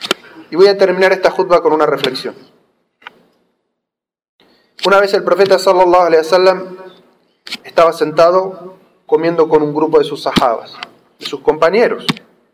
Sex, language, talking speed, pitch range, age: male, Spanish, 135 wpm, 165-205 Hz, 30-49